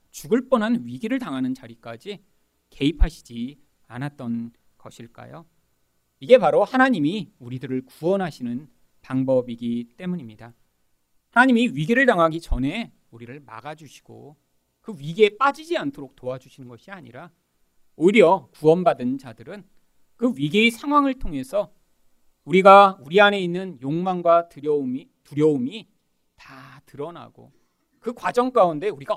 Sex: male